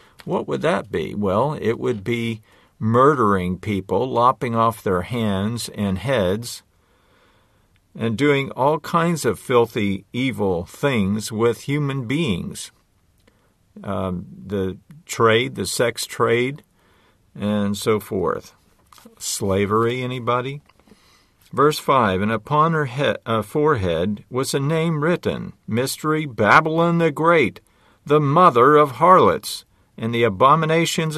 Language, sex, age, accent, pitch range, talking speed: English, male, 50-69, American, 105-155 Hz, 115 wpm